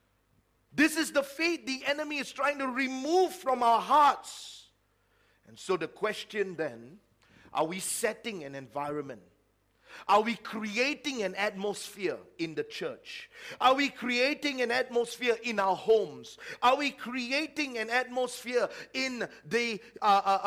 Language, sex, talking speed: English, male, 140 wpm